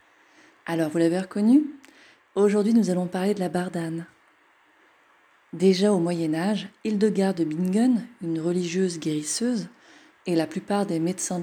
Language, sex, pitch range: French, female, 165-215 Hz